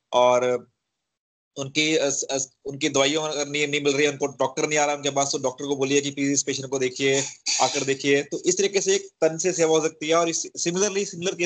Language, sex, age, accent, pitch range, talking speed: Hindi, male, 30-49, native, 135-170 Hz, 90 wpm